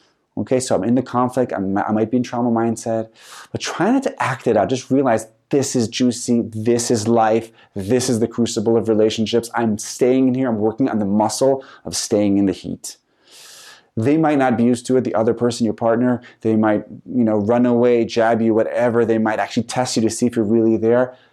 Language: English